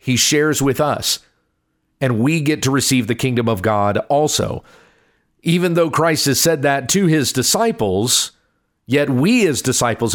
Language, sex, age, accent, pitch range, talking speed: English, male, 40-59, American, 120-165 Hz, 160 wpm